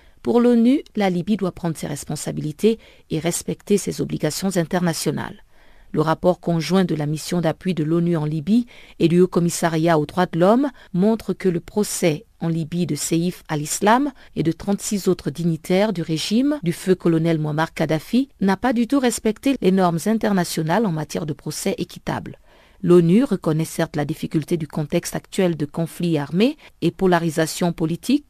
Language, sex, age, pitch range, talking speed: French, female, 50-69, 165-205 Hz, 170 wpm